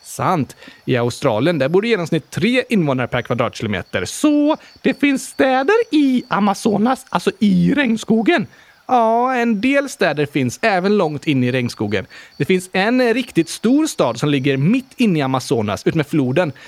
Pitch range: 130-195 Hz